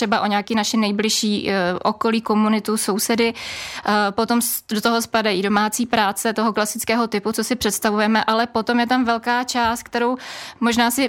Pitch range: 215-235 Hz